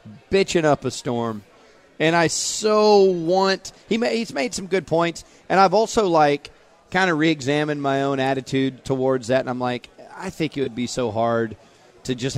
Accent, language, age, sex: American, English, 30-49, male